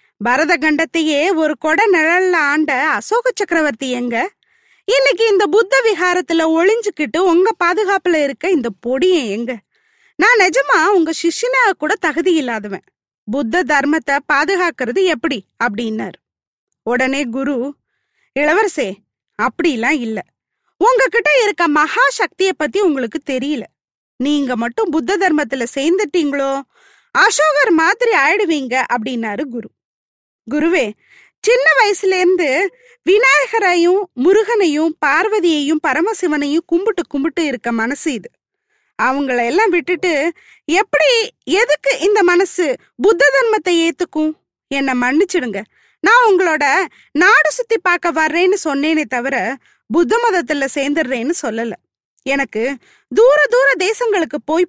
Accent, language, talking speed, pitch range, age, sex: native, Tamil, 105 wpm, 275-395 Hz, 20-39, female